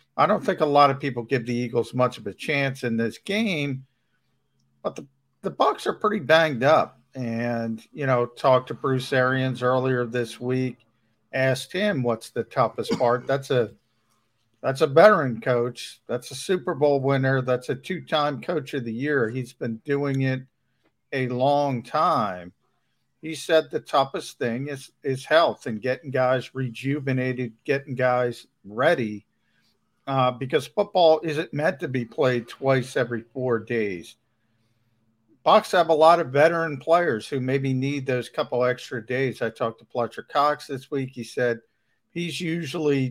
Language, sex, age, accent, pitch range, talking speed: English, male, 50-69, American, 120-145 Hz, 165 wpm